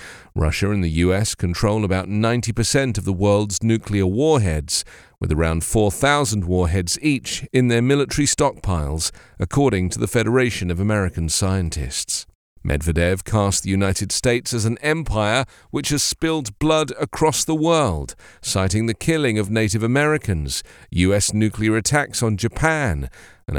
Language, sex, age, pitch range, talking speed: English, male, 40-59, 95-130 Hz, 140 wpm